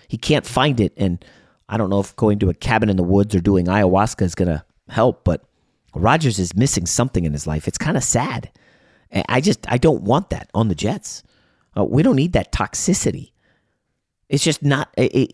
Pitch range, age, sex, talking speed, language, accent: 100-145 Hz, 30-49, male, 210 wpm, English, American